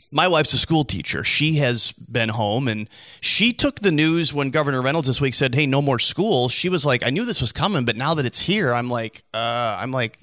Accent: American